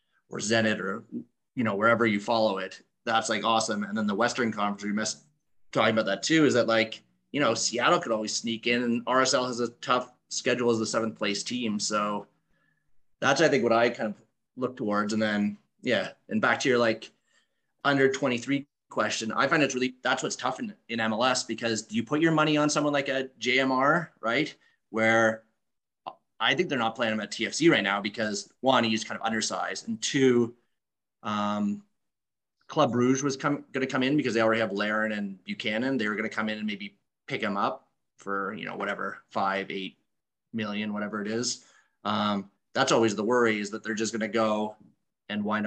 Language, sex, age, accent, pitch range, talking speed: English, male, 30-49, American, 105-125 Hz, 205 wpm